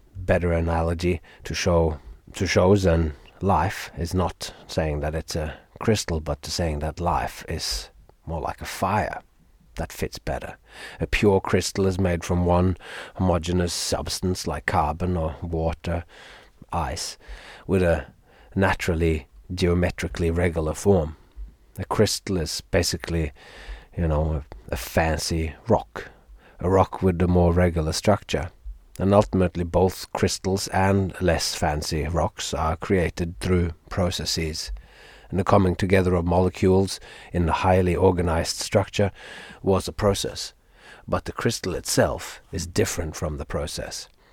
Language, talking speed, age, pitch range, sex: English, 135 wpm, 30-49, 80-95 Hz, male